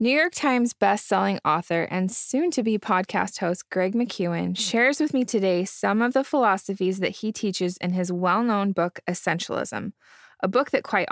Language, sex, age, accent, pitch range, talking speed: English, female, 20-39, American, 180-225 Hz, 165 wpm